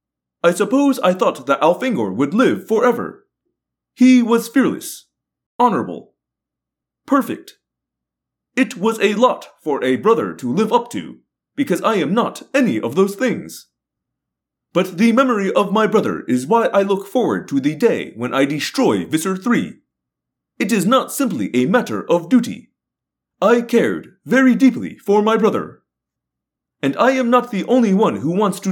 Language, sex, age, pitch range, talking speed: English, male, 30-49, 200-255 Hz, 160 wpm